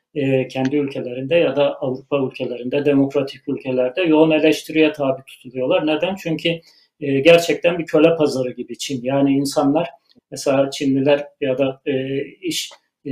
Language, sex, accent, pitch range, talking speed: Turkish, male, native, 140-160 Hz, 125 wpm